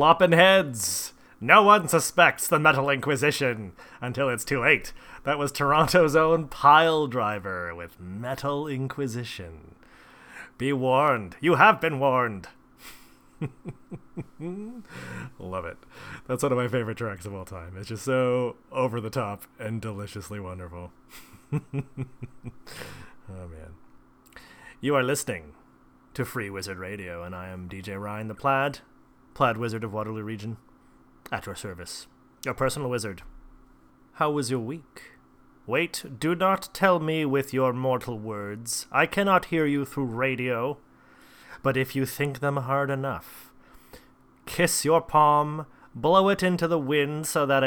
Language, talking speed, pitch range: English, 140 wpm, 105-150 Hz